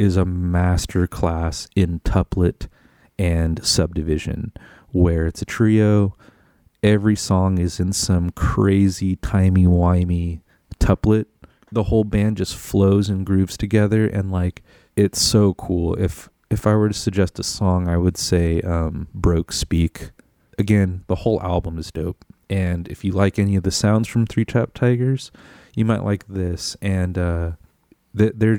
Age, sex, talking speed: 30-49, male, 155 wpm